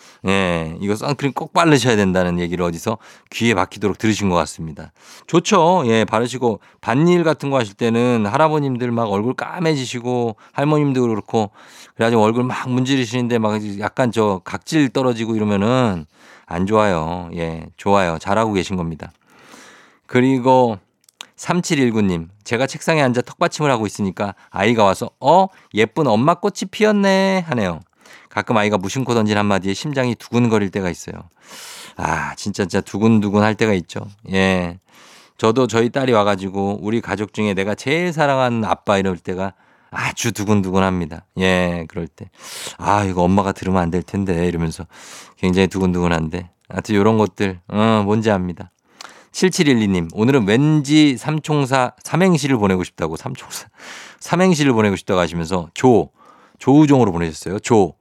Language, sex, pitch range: Korean, male, 95-130 Hz